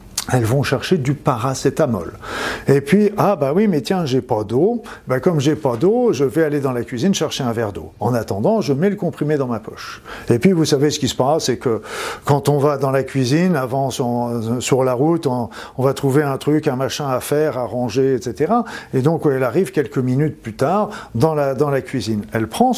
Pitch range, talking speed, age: 120-150 Hz, 225 wpm, 50-69